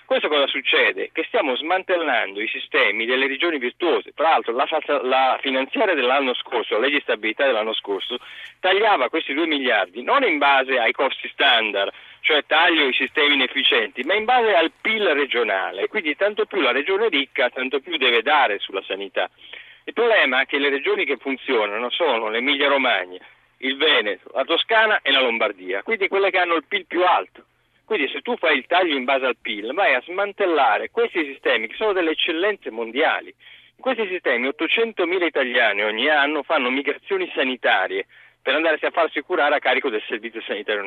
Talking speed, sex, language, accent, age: 180 wpm, male, Italian, native, 40-59